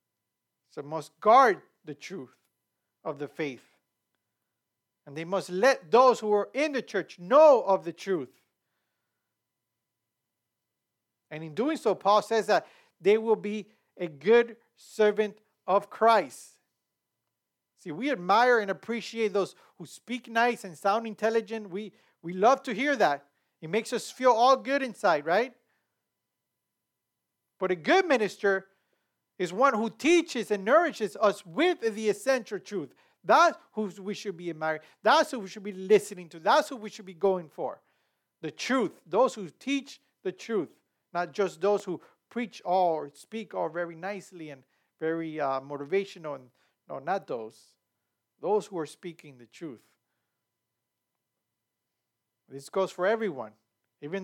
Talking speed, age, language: 145 wpm, 50-69, English